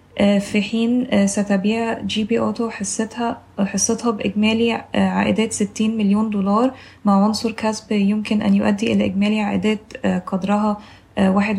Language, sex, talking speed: Arabic, female, 120 wpm